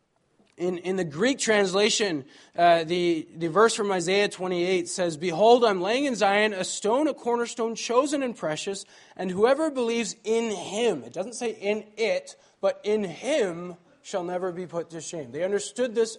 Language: English